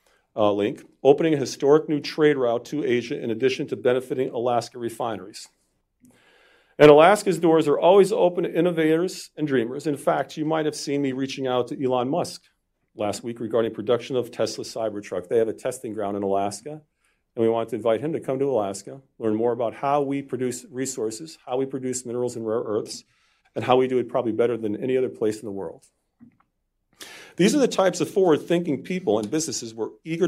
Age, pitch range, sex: 40-59, 120-155 Hz, male